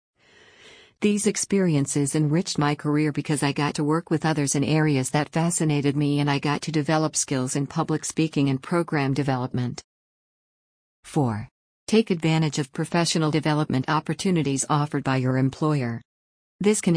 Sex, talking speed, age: female, 150 wpm, 50-69